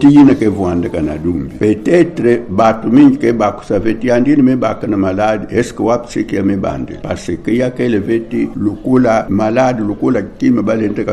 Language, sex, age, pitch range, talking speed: English, male, 60-79, 105-130 Hz, 160 wpm